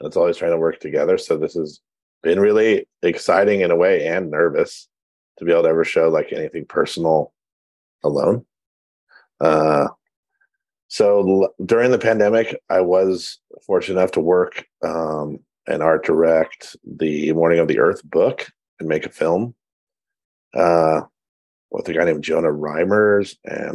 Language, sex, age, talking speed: English, male, 40-59, 155 wpm